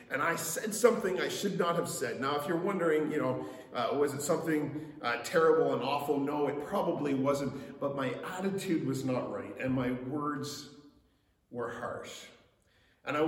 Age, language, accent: 40-59, English, American